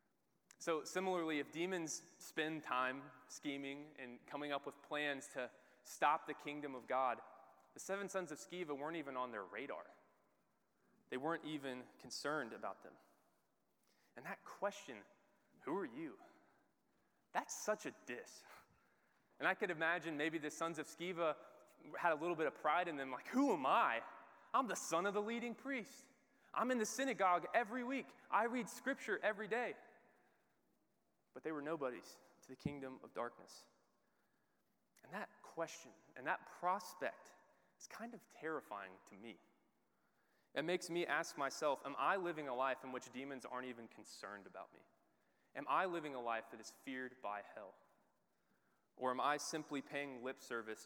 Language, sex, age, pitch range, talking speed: English, male, 20-39, 125-170 Hz, 165 wpm